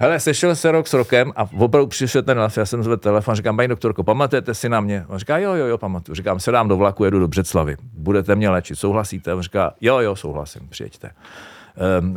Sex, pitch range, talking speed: male, 85-105 Hz, 225 wpm